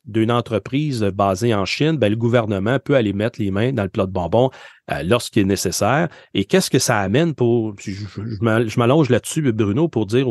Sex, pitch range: male, 110-140 Hz